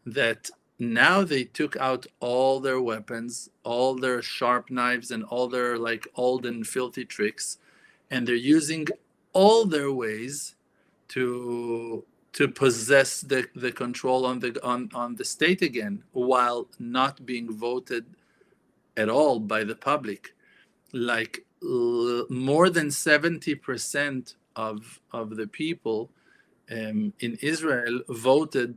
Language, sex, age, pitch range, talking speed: English, male, 40-59, 110-135 Hz, 125 wpm